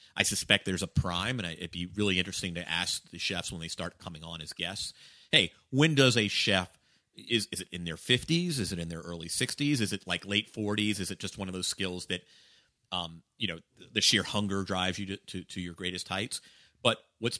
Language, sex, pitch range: English, male, 85-110 Hz